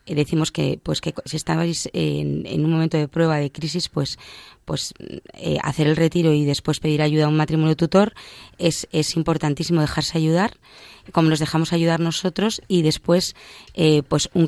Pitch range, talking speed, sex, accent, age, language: 155-175 Hz, 180 wpm, female, Spanish, 20-39, Spanish